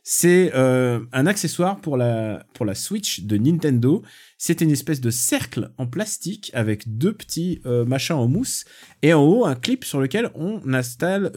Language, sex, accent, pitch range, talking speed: French, male, French, 120-170 Hz, 180 wpm